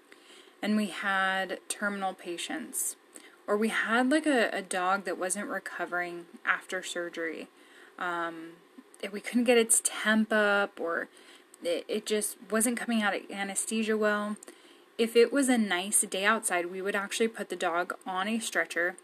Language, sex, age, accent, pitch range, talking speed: English, female, 10-29, American, 190-235 Hz, 160 wpm